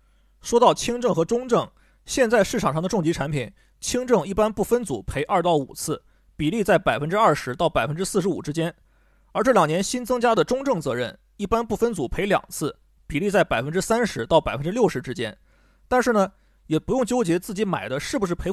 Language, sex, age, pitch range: Chinese, male, 30-49, 155-225 Hz